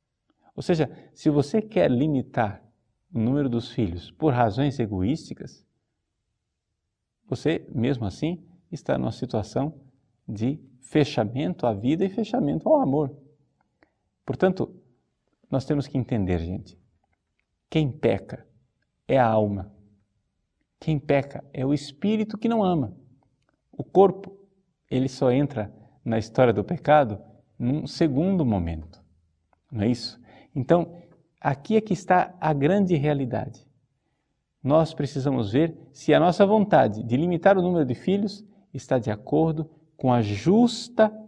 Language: Portuguese